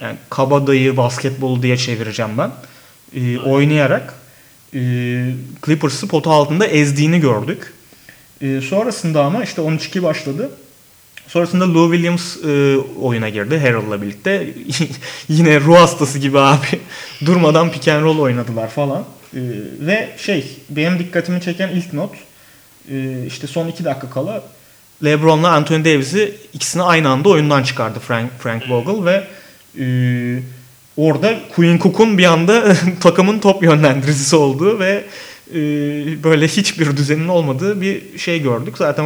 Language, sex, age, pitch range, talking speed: Turkish, male, 30-49, 130-165 Hz, 130 wpm